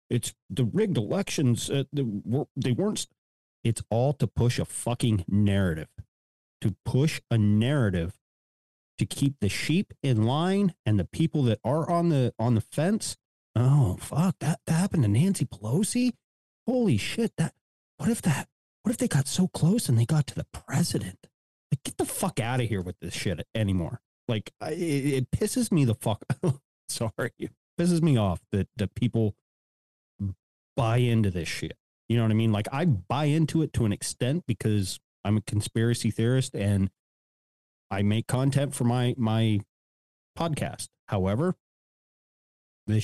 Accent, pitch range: American, 105-150 Hz